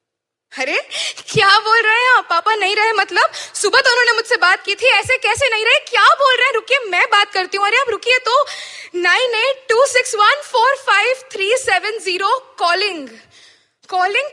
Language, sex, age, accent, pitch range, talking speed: Hindi, female, 20-39, native, 285-455 Hz, 195 wpm